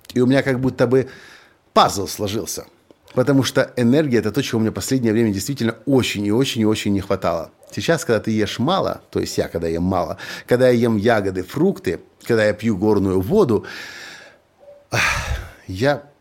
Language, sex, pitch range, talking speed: Russian, male, 100-130 Hz, 180 wpm